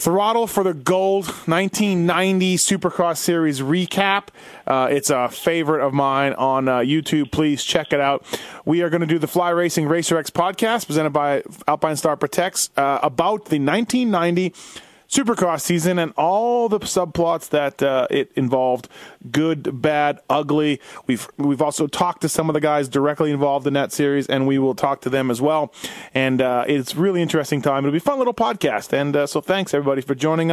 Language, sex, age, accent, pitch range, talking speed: English, male, 30-49, American, 140-180 Hz, 185 wpm